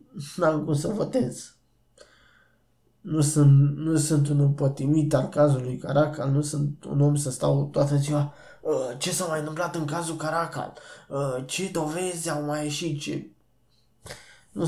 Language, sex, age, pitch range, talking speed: Romanian, male, 20-39, 135-155 Hz, 145 wpm